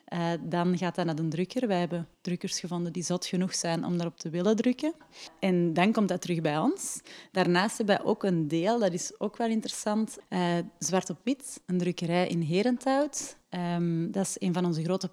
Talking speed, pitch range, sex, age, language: 210 wpm, 175-210 Hz, female, 30-49, Dutch